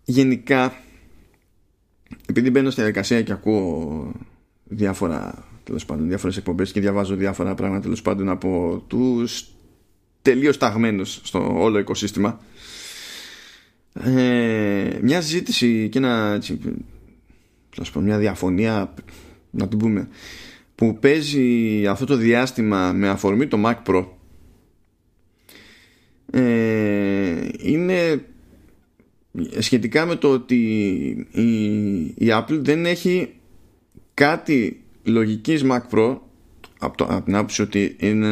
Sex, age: male, 20-39